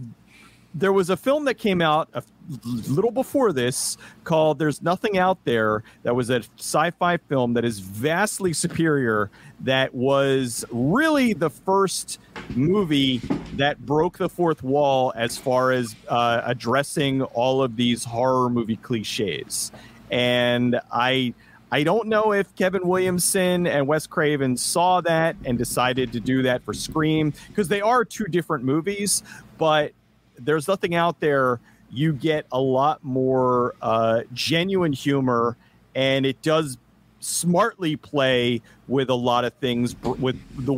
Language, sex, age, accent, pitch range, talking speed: English, male, 40-59, American, 125-170 Hz, 145 wpm